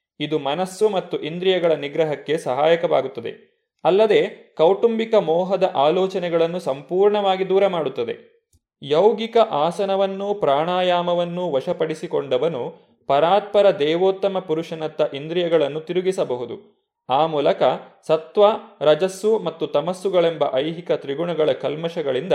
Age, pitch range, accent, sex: 30-49, 165-215 Hz, native, male